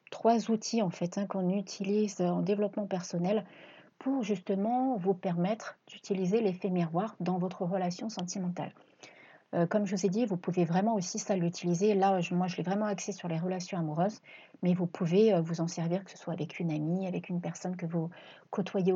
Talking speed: 195 wpm